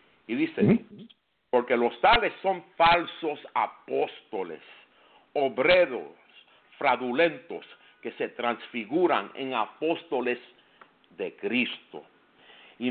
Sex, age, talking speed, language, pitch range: male, 50-69, 85 wpm, English, 130-200 Hz